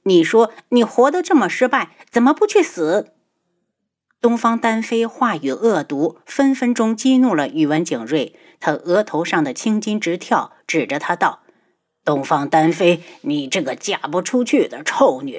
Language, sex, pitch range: Chinese, female, 180-280 Hz